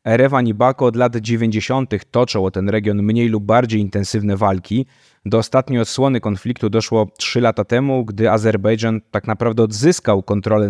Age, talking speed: 20-39, 165 wpm